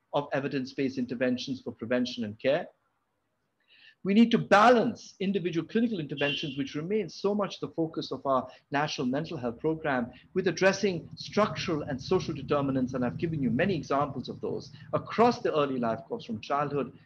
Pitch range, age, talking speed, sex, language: 125-170 Hz, 50-69, 165 wpm, male, English